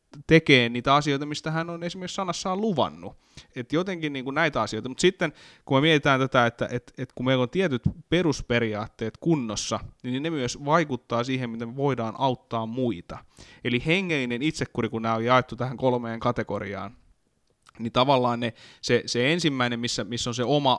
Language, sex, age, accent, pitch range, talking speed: Finnish, male, 20-39, native, 115-140 Hz, 170 wpm